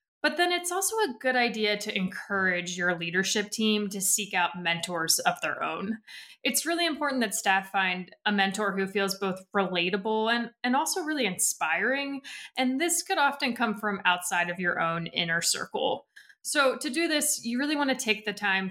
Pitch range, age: 185-245 Hz, 20-39